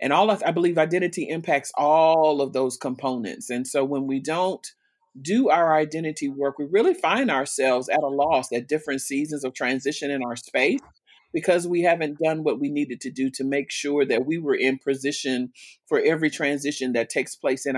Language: English